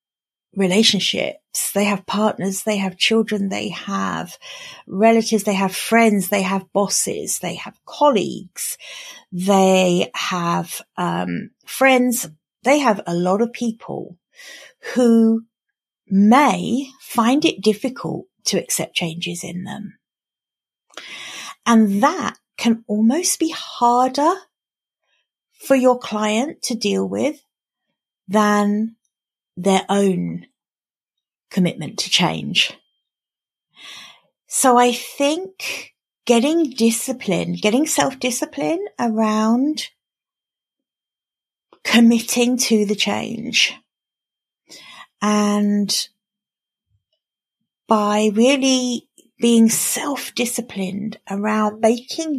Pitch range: 200-265 Hz